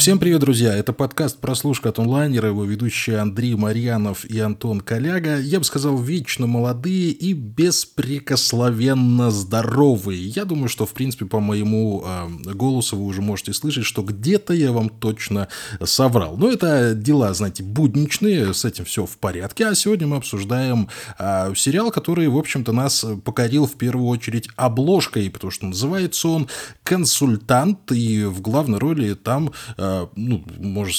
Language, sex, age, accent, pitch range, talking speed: Russian, male, 20-39, native, 105-150 Hz, 155 wpm